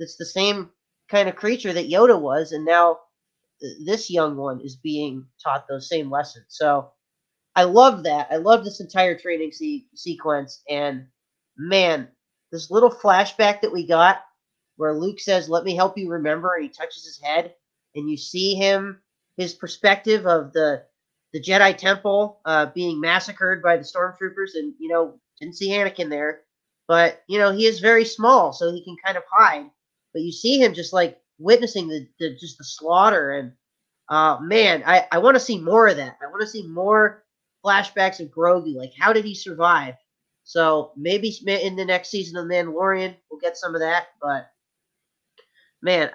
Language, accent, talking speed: English, American, 180 wpm